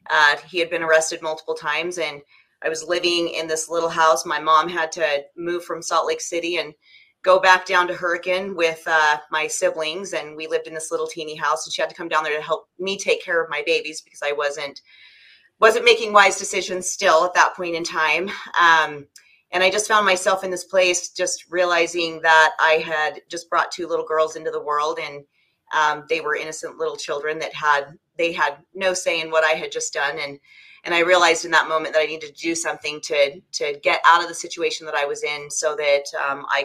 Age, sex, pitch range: 30-49, female, 155-175 Hz